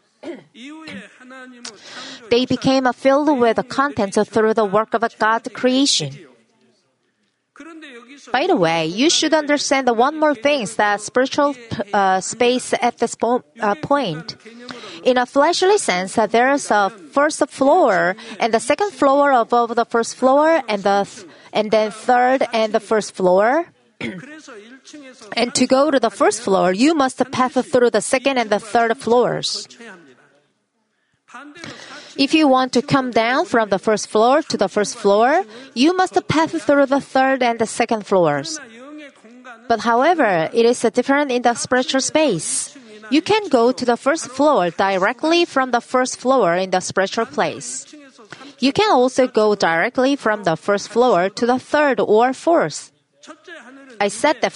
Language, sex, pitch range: Korean, female, 220-275 Hz